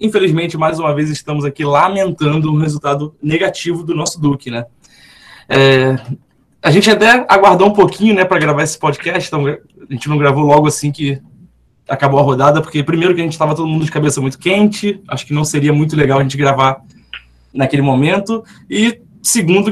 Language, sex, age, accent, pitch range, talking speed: Portuguese, male, 20-39, Brazilian, 145-195 Hz, 190 wpm